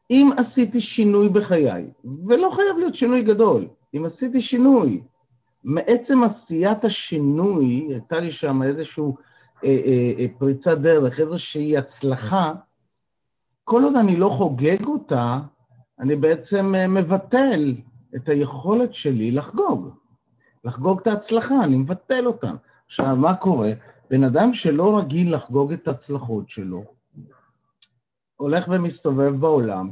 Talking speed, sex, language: 120 wpm, male, Hebrew